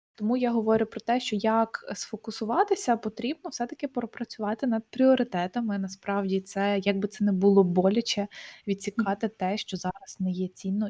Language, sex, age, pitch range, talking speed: Ukrainian, female, 20-39, 195-220 Hz, 155 wpm